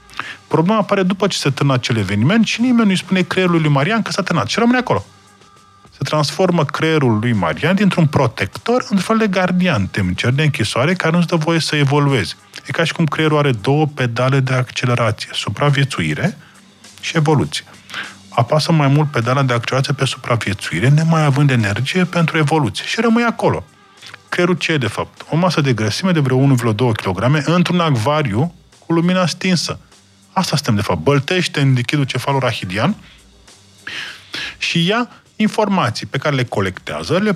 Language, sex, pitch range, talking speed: Romanian, male, 120-185 Hz, 165 wpm